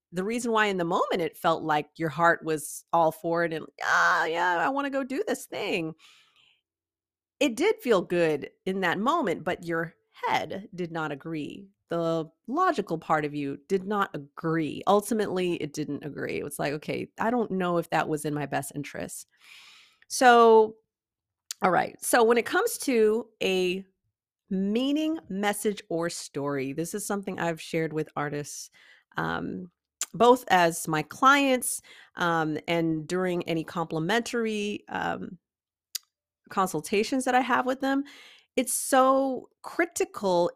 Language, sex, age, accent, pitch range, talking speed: English, female, 30-49, American, 160-235 Hz, 150 wpm